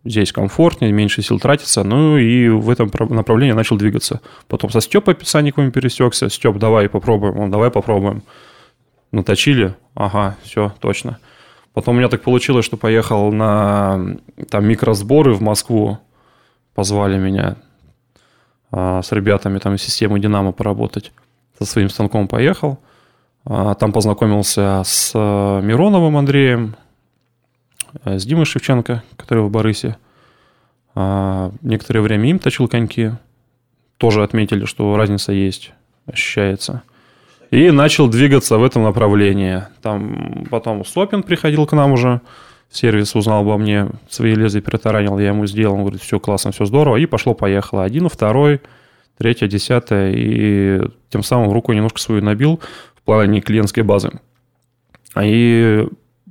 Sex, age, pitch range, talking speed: male, 20-39, 105-125 Hz, 130 wpm